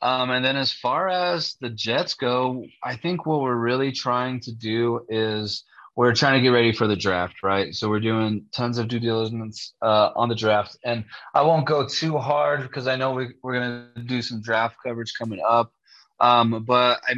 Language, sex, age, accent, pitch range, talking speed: English, male, 20-39, American, 110-130 Hz, 205 wpm